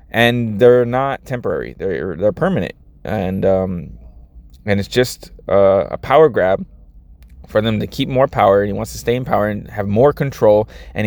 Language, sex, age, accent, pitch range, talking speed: English, male, 20-39, American, 90-125 Hz, 185 wpm